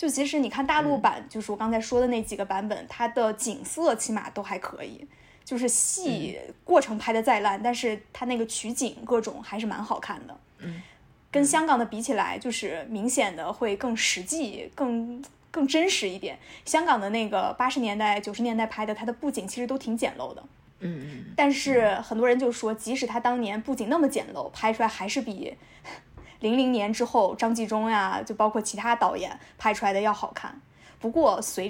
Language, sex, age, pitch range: Chinese, female, 10-29, 215-260 Hz